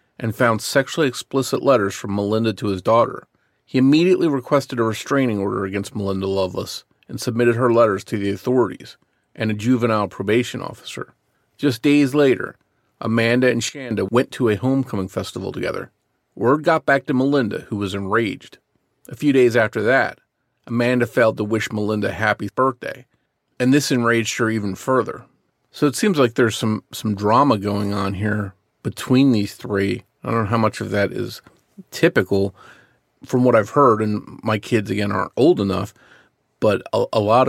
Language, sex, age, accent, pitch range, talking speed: English, male, 40-59, American, 100-125 Hz, 170 wpm